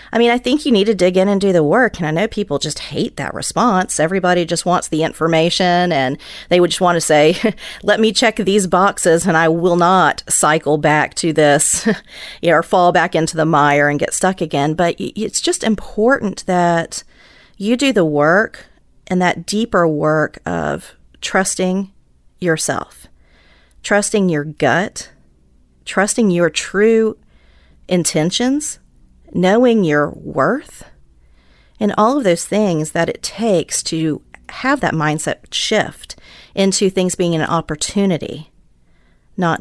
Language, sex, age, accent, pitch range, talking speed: English, female, 40-59, American, 155-210 Hz, 155 wpm